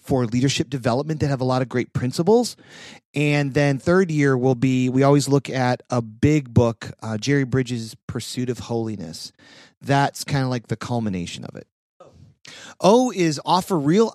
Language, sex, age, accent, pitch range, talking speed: English, male, 40-59, American, 130-165 Hz, 175 wpm